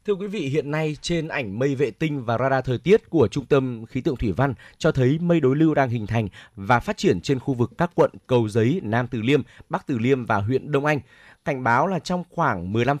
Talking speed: 255 wpm